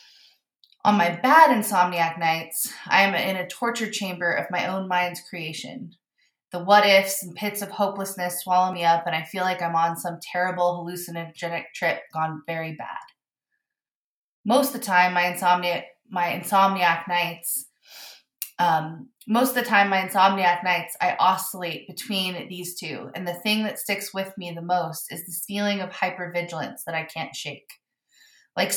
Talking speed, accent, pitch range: 165 wpm, American, 175-205 Hz